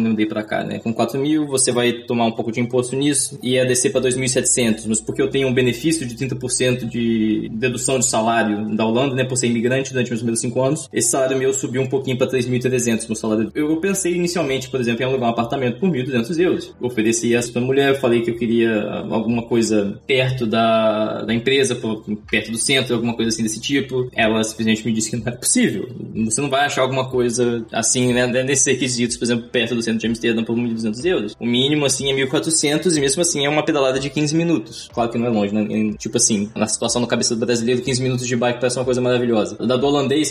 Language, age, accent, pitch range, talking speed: Portuguese, 10-29, Brazilian, 115-130 Hz, 230 wpm